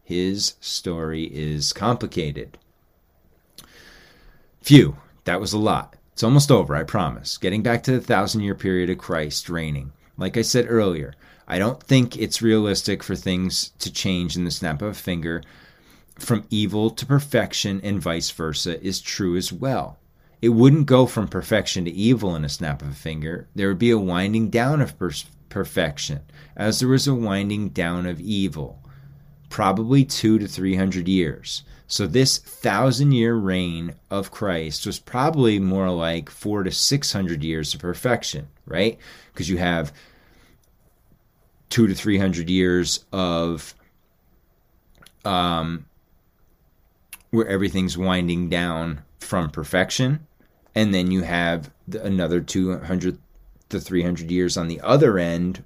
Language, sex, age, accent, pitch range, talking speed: English, male, 30-49, American, 85-110 Hz, 150 wpm